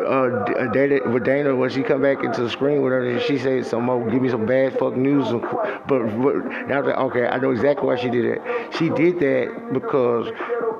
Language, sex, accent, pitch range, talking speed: English, male, American, 125-145 Hz, 210 wpm